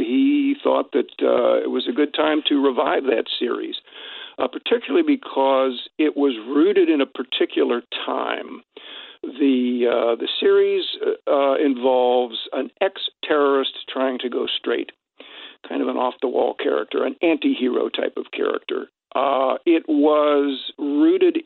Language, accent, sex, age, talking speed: English, American, male, 50-69, 145 wpm